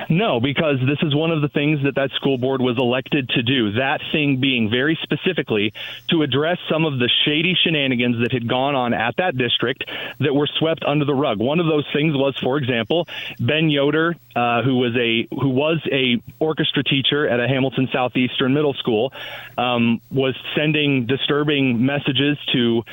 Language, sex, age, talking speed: English, male, 30-49, 185 wpm